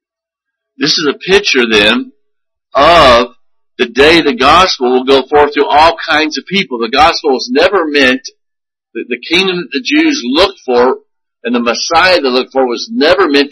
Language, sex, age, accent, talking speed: English, male, 50-69, American, 175 wpm